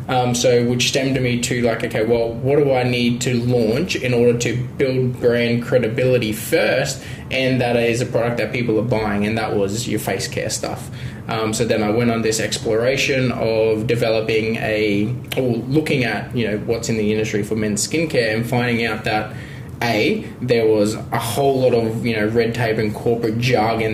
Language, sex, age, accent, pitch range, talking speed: English, male, 20-39, Australian, 115-130 Hz, 200 wpm